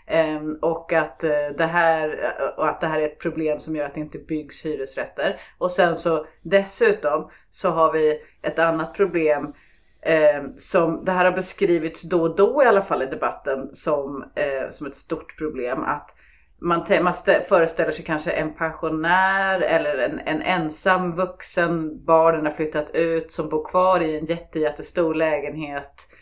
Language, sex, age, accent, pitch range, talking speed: Swedish, female, 30-49, native, 155-180 Hz, 155 wpm